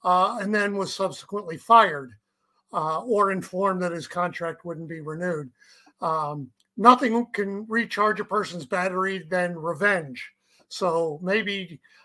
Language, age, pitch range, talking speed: English, 50-69, 170-205 Hz, 130 wpm